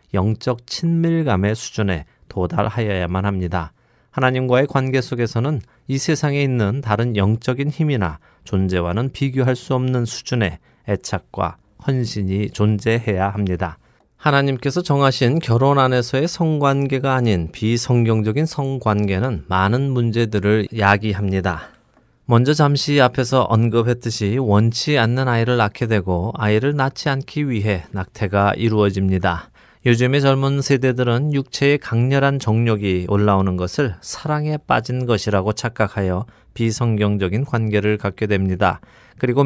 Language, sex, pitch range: Korean, male, 100-130 Hz